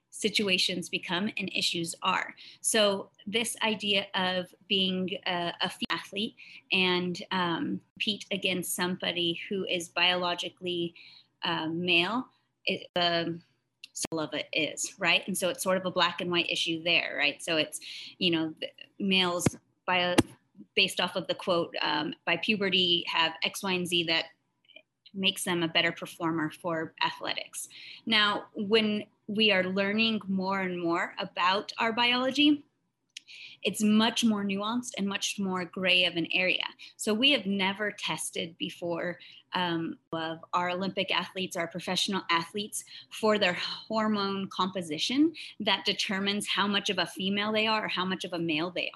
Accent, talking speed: American, 155 wpm